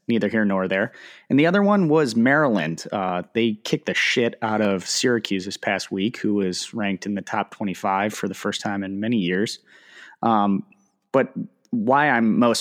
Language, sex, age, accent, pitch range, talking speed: English, male, 30-49, American, 100-120 Hz, 190 wpm